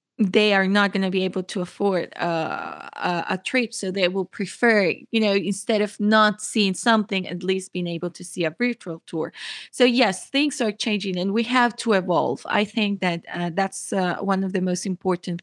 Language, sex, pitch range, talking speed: English, female, 180-215 Hz, 205 wpm